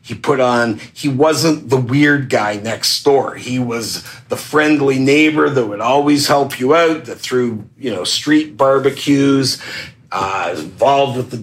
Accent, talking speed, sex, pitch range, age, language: American, 165 wpm, male, 110-135 Hz, 50-69, English